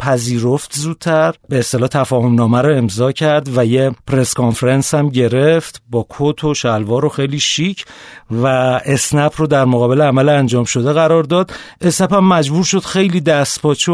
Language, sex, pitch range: Persian, male, 130-165 Hz